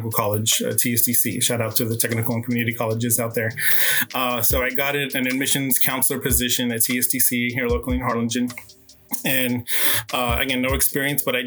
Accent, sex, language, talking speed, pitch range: American, male, English, 180 wpm, 115-125 Hz